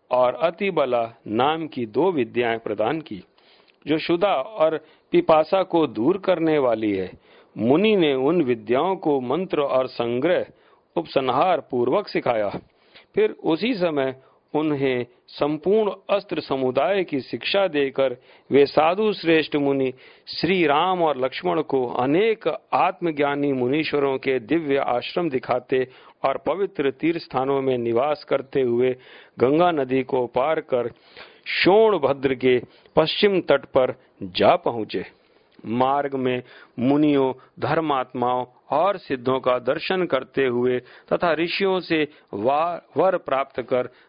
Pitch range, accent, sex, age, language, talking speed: 125-165 Hz, native, male, 50-69, Hindi, 125 wpm